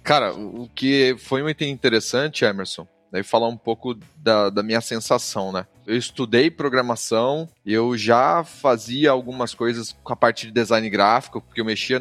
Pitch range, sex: 120-160 Hz, male